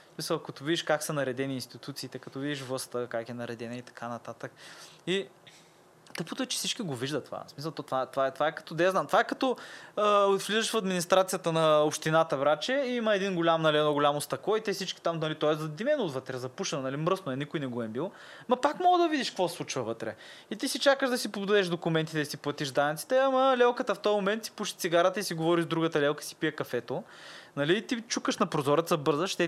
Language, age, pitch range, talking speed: Bulgarian, 20-39, 140-200 Hz, 235 wpm